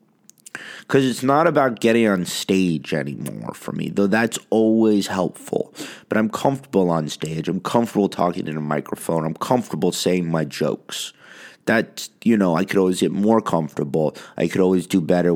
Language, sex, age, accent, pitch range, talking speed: English, male, 30-49, American, 80-110 Hz, 170 wpm